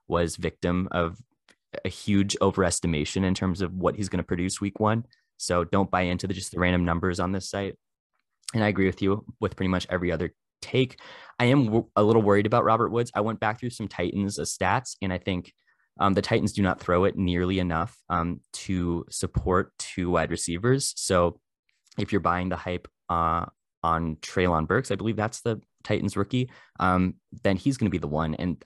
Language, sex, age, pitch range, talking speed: English, male, 20-39, 85-105 Hz, 205 wpm